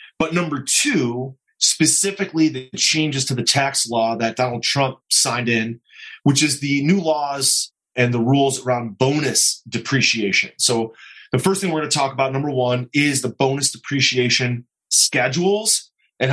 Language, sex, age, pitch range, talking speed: English, male, 30-49, 125-155 Hz, 160 wpm